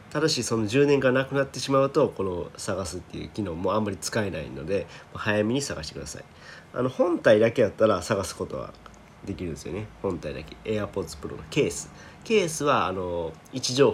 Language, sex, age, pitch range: Japanese, male, 40-59, 85-135 Hz